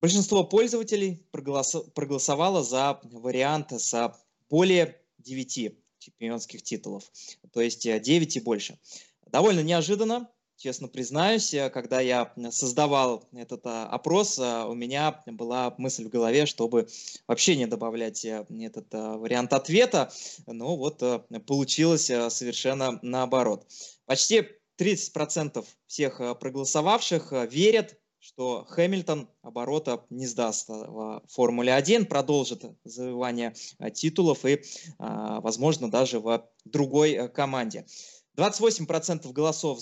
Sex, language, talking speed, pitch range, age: male, Russian, 100 wpm, 120-165 Hz, 20-39